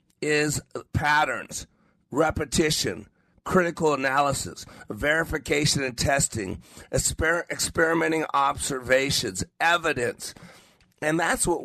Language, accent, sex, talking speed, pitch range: English, American, male, 70 wpm, 115-150 Hz